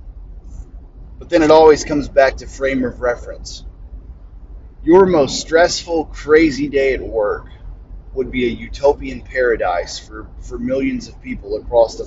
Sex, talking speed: male, 145 wpm